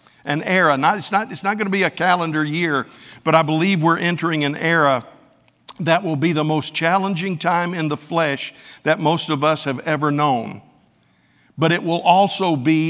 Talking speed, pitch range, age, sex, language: 195 wpm, 145-175 Hz, 50-69, male, English